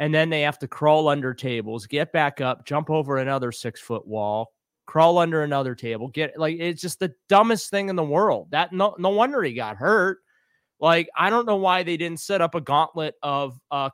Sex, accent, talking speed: male, American, 220 wpm